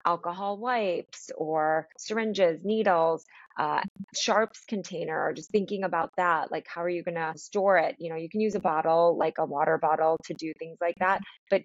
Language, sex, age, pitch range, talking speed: English, female, 20-39, 165-200 Hz, 190 wpm